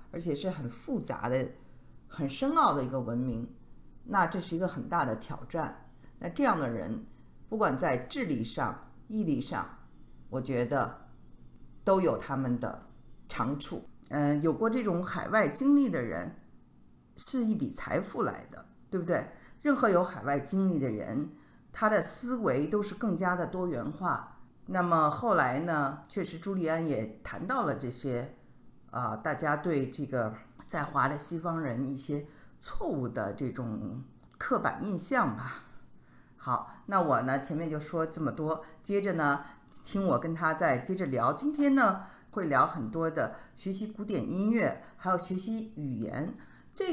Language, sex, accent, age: Chinese, female, native, 50-69